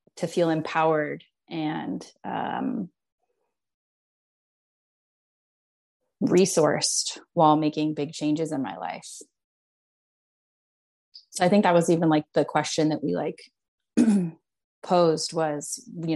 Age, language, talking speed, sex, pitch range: 30-49, English, 105 wpm, female, 150-180 Hz